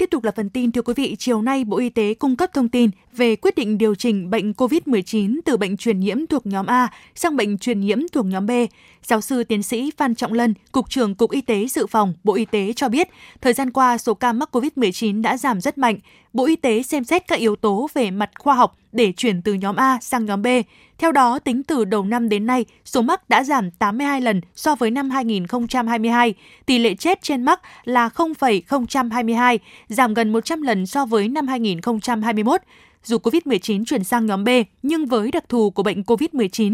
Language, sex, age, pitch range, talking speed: Vietnamese, female, 20-39, 215-270 Hz, 220 wpm